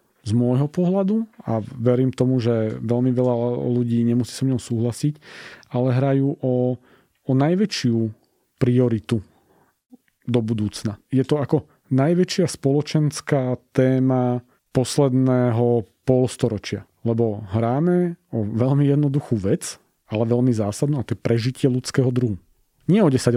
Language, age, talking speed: Slovak, 40-59, 125 wpm